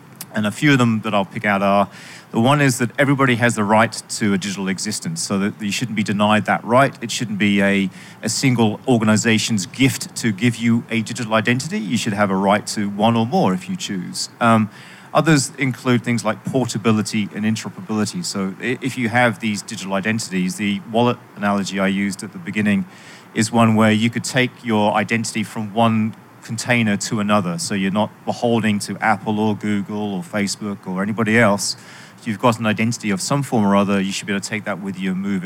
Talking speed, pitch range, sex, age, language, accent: 215 wpm, 105-120 Hz, male, 40-59, English, British